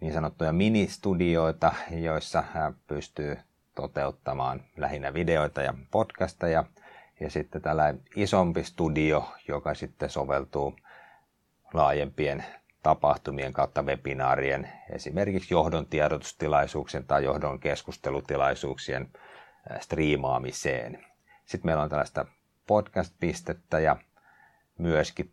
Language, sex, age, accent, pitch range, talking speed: Finnish, male, 30-49, native, 70-80 Hz, 85 wpm